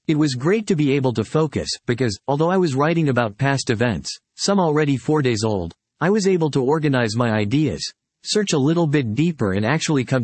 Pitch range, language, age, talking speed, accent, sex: 120-155 Hz, English, 40-59, 210 wpm, American, male